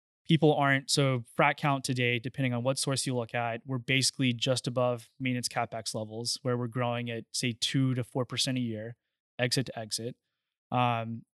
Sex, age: male, 20-39